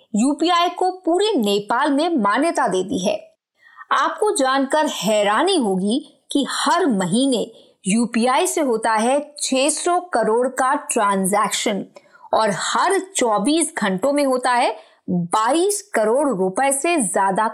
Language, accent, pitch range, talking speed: Hindi, native, 225-335 Hz, 125 wpm